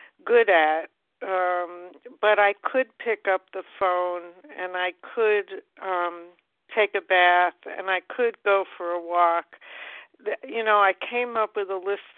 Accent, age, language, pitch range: American, 60-79, English, 180-210 Hz